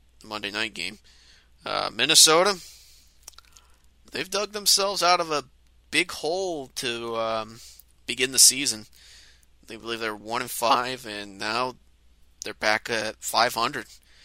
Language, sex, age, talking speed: English, male, 30-49, 125 wpm